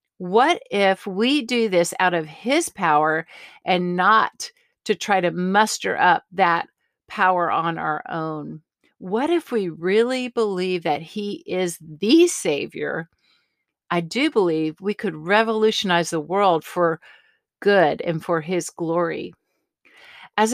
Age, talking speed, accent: 50-69, 135 wpm, American